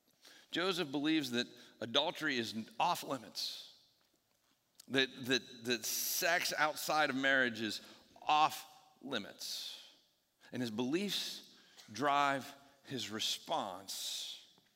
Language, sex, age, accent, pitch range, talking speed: English, male, 50-69, American, 125-185 Hz, 80 wpm